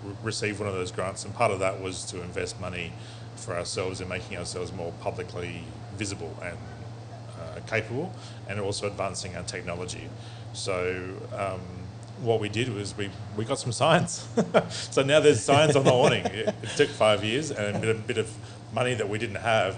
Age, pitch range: 30-49, 95-115 Hz